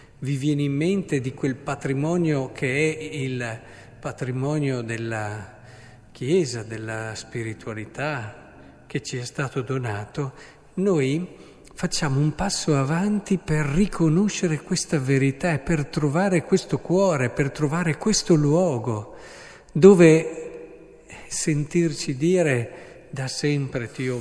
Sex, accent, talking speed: male, native, 110 wpm